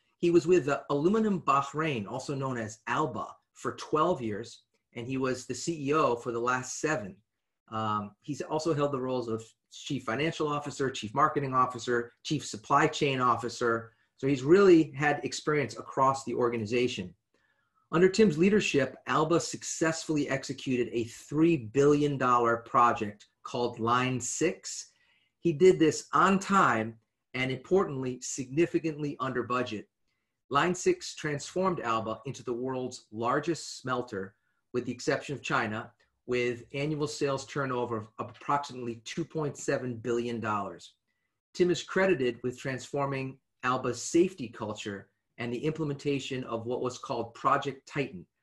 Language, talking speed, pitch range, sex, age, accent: English, 135 wpm, 120-150 Hz, male, 30-49, American